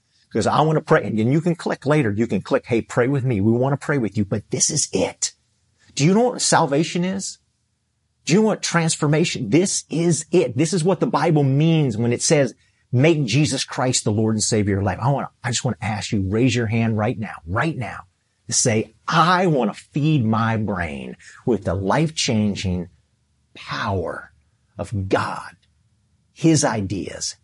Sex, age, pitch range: male, 40-59, 105-135 Hz